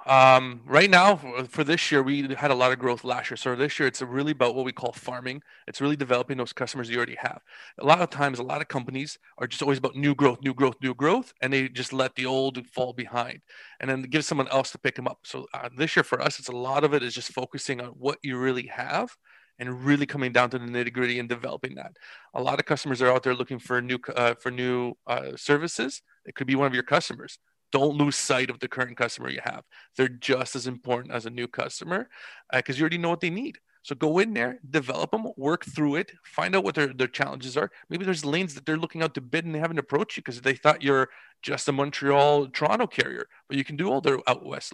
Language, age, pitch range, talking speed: English, 30-49, 125-150 Hz, 255 wpm